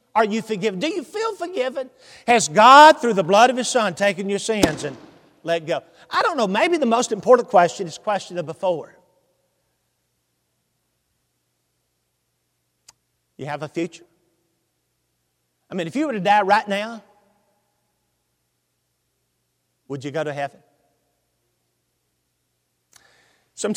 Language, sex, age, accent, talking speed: English, male, 50-69, American, 135 wpm